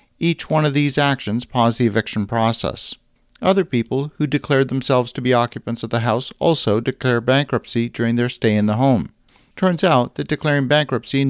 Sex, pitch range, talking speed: male, 120-140 Hz, 185 wpm